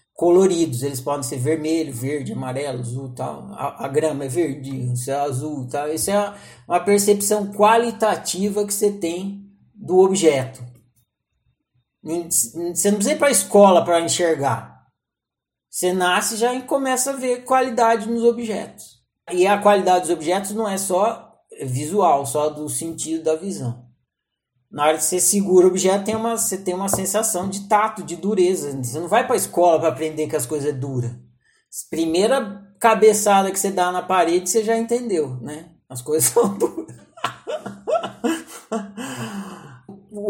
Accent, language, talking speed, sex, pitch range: Brazilian, Portuguese, 160 wpm, male, 145-205 Hz